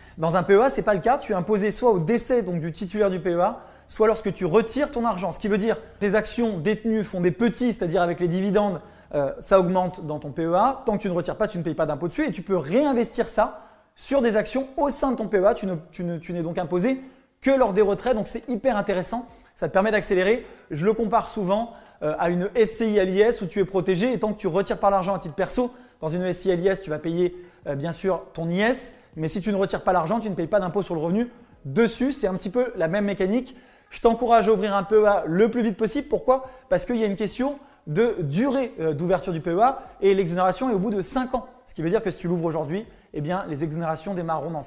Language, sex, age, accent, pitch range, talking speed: French, male, 20-39, French, 180-230 Hz, 260 wpm